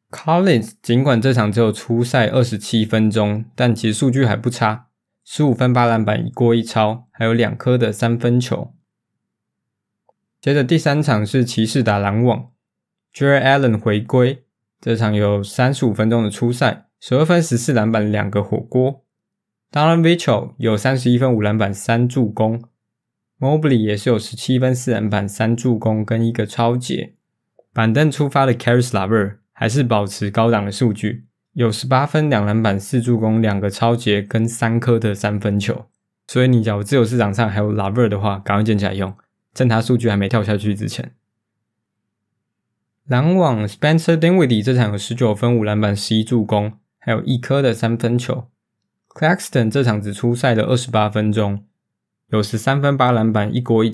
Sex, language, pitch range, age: male, Chinese, 105-125 Hz, 20-39